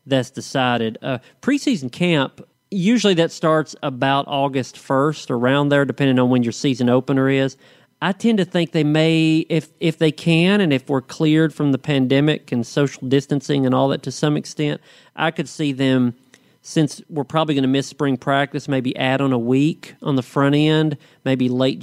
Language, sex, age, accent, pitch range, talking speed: English, male, 40-59, American, 125-145 Hz, 190 wpm